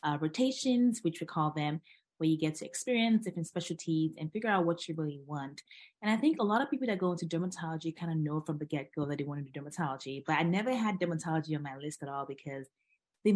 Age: 20-39